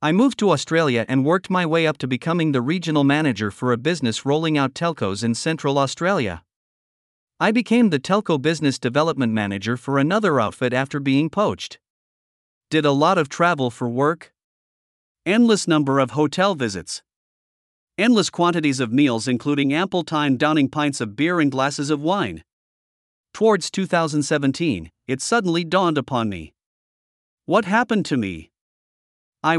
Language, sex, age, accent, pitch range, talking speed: English, male, 50-69, American, 130-175 Hz, 150 wpm